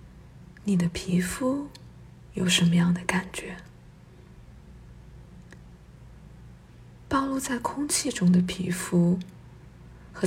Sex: female